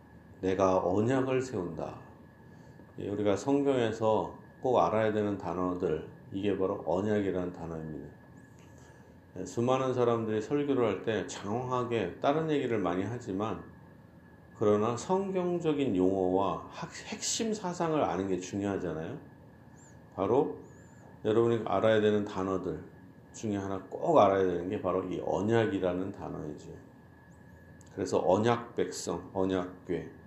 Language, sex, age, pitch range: Korean, male, 40-59, 95-120 Hz